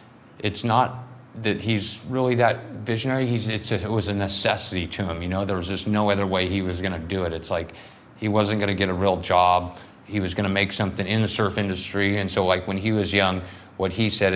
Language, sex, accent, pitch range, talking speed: English, male, American, 90-105 Hz, 225 wpm